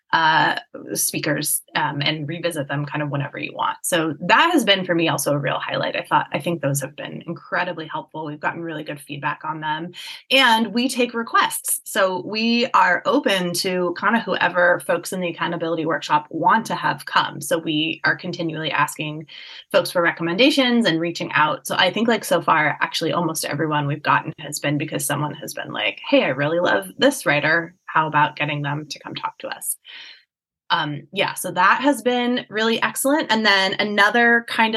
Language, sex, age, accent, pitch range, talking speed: English, female, 20-39, American, 160-205 Hz, 195 wpm